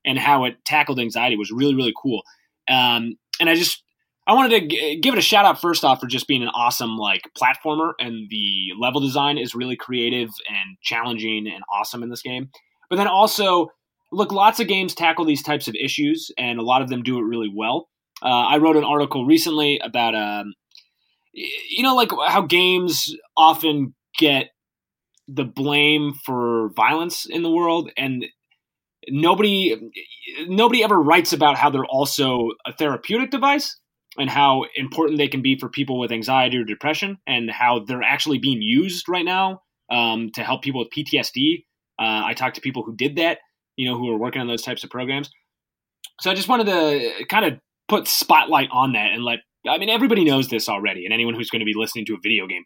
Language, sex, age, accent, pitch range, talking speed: English, male, 20-39, American, 120-170 Hz, 195 wpm